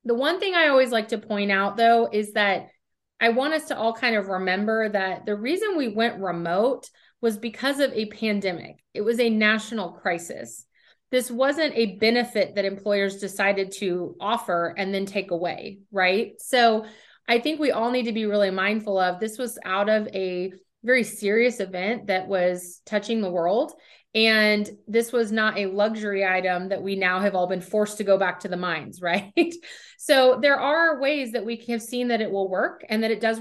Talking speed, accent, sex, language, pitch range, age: 200 wpm, American, female, English, 195-235 Hz, 30-49